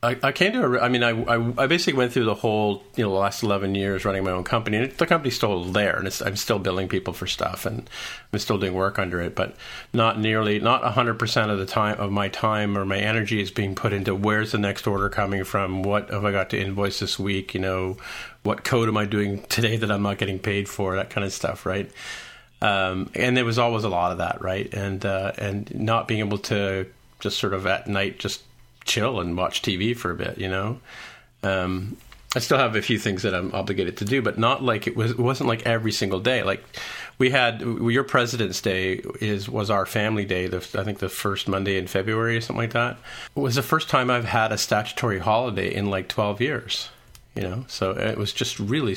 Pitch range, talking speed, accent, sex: 95-115 Hz, 240 wpm, American, male